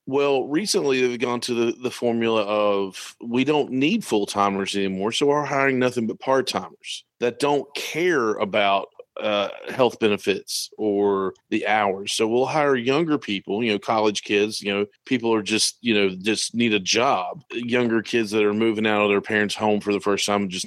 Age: 40-59